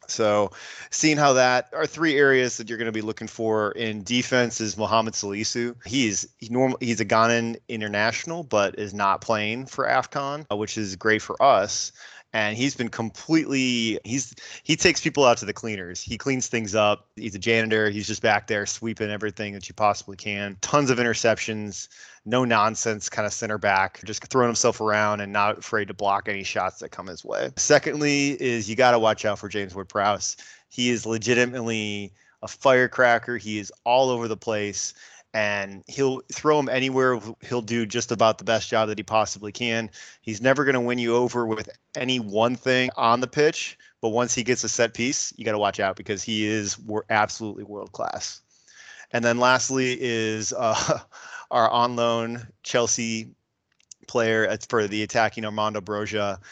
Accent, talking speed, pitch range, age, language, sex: American, 185 wpm, 105-125 Hz, 20-39, English, male